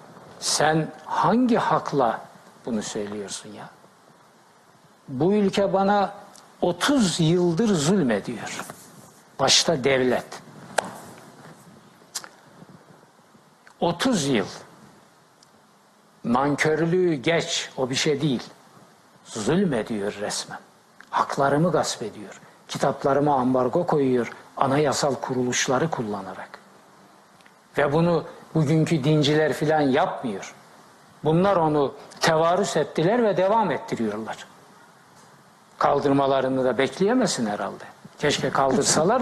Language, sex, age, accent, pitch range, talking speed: Turkish, male, 60-79, native, 140-190 Hz, 80 wpm